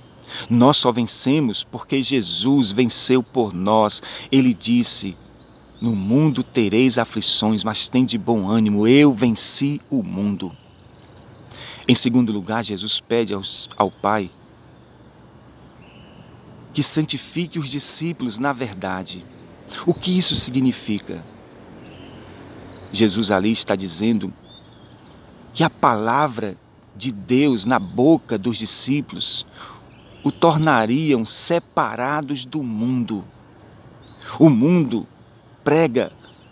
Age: 40-59